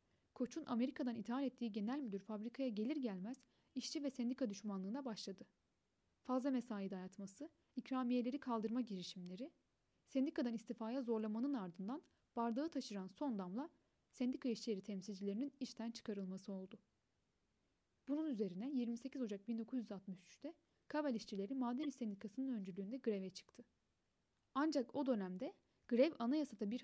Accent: native